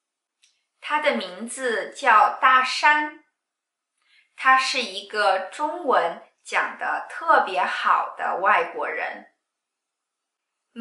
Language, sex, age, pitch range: Chinese, female, 20-39, 205-300 Hz